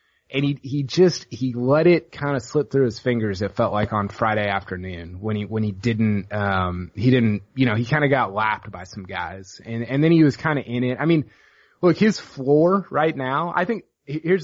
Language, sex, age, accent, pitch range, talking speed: English, male, 20-39, American, 105-140 Hz, 235 wpm